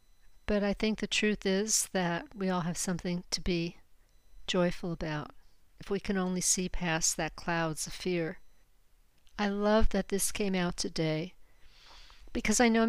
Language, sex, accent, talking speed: English, female, American, 165 wpm